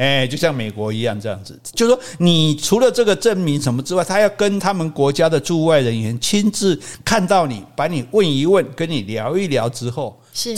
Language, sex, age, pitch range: Chinese, male, 60-79, 115-170 Hz